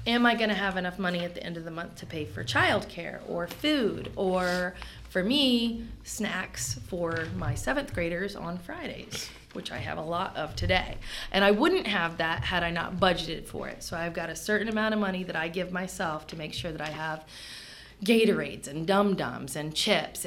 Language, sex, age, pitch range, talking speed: English, female, 30-49, 180-230 Hz, 205 wpm